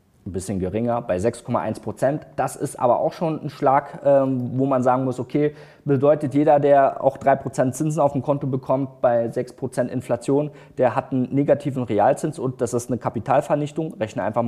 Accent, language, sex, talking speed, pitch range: German, German, male, 175 wpm, 130-160 Hz